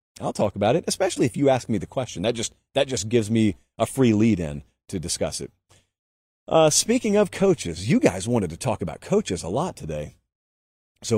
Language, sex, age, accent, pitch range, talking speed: English, male, 40-59, American, 95-135 Hz, 200 wpm